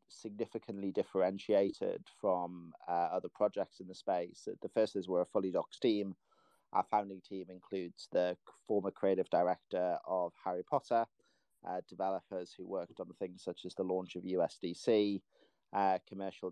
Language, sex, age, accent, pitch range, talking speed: English, male, 30-49, British, 90-100 Hz, 155 wpm